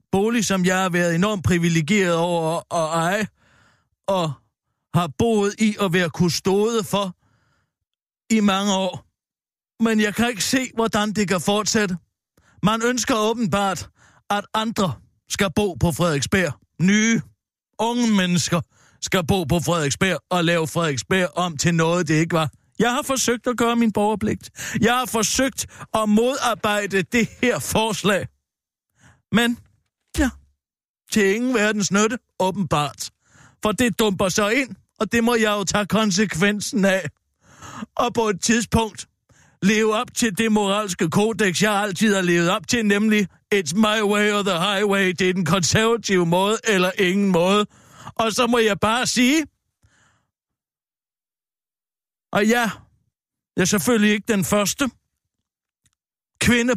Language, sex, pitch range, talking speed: Danish, male, 175-220 Hz, 145 wpm